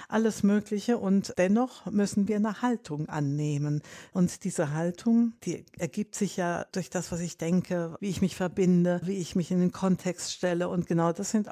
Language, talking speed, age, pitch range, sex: German, 190 wpm, 60-79, 180-210 Hz, female